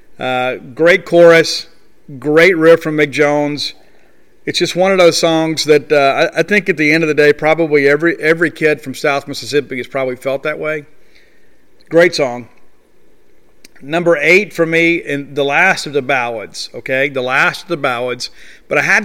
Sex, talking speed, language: male, 185 wpm, English